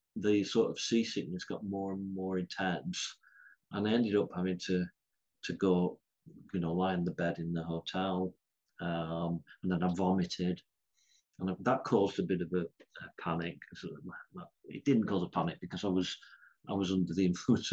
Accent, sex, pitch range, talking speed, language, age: British, male, 90-110 Hz, 180 wpm, English, 40-59